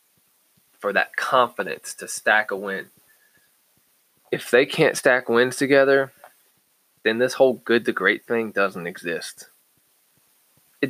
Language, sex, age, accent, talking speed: English, male, 20-39, American, 125 wpm